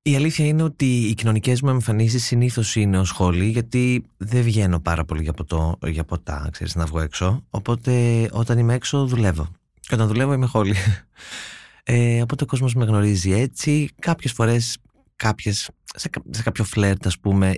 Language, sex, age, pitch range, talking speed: Greek, male, 20-39, 95-125 Hz, 175 wpm